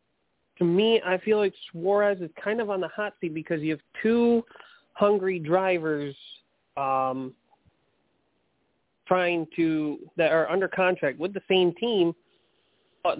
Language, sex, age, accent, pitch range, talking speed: English, male, 30-49, American, 140-180 Hz, 140 wpm